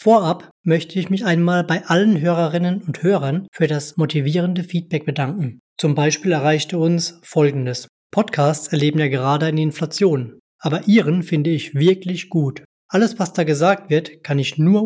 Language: German